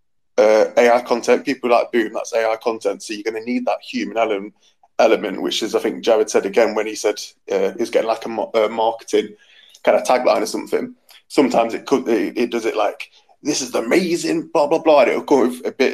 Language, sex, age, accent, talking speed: English, male, 20-39, British, 225 wpm